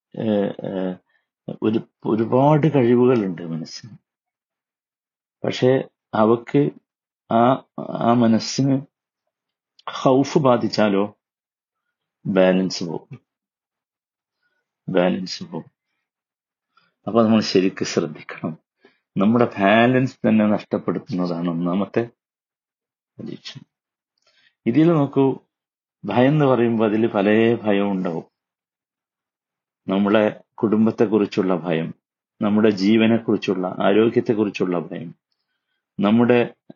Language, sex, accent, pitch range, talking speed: Malayalam, male, native, 95-120 Hz, 75 wpm